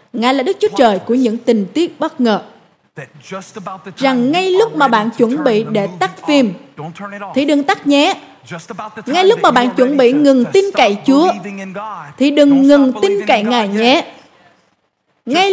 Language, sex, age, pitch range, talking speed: Vietnamese, female, 20-39, 235-350 Hz, 165 wpm